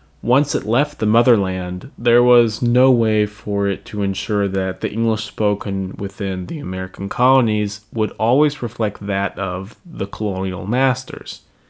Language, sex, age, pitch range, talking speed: English, male, 20-39, 95-125 Hz, 150 wpm